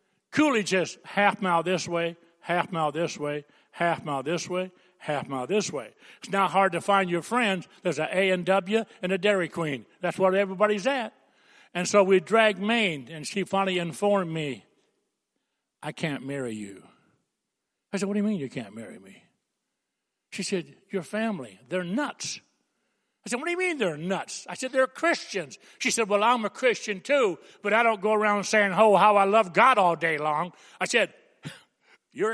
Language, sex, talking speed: English, male, 195 wpm